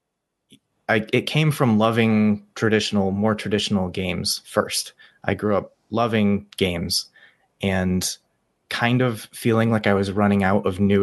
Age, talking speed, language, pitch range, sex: 20-39, 140 wpm, English, 95-105 Hz, male